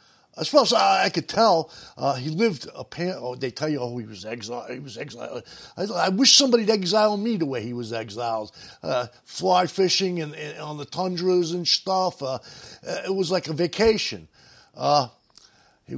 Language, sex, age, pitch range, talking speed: English, male, 50-69, 125-190 Hz, 190 wpm